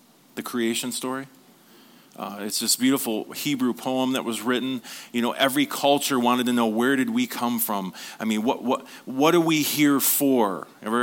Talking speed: 185 wpm